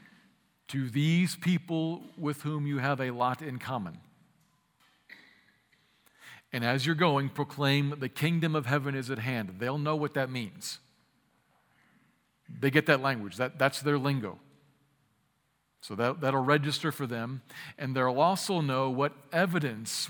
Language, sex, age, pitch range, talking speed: English, male, 50-69, 125-150 Hz, 145 wpm